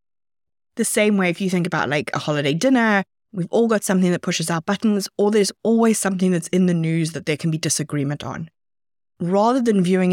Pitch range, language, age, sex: 160-205 Hz, English, 20-39, female